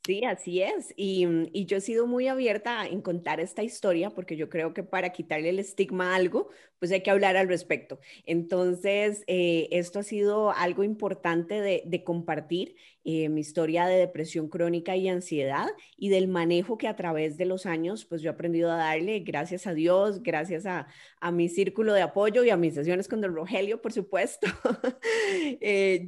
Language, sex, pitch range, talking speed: Spanish, female, 165-200 Hz, 190 wpm